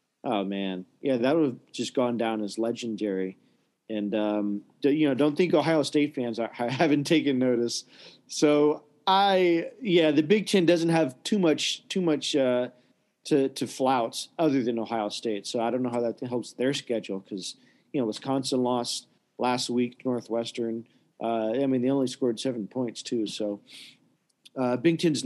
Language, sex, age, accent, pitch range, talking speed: English, male, 40-59, American, 115-145 Hz, 175 wpm